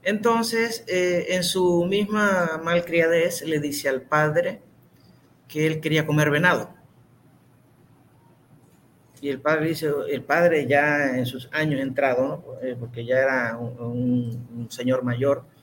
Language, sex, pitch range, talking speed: Spanish, male, 130-180 Hz, 130 wpm